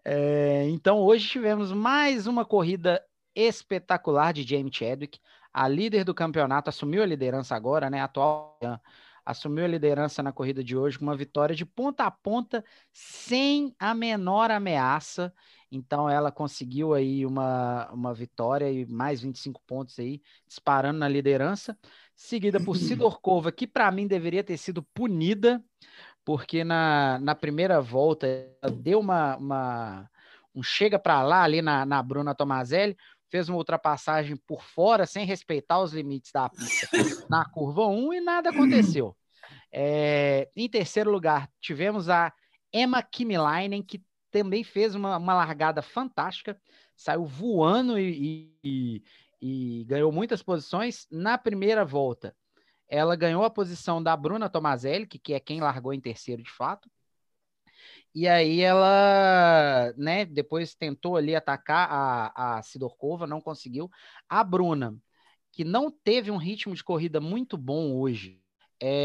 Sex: male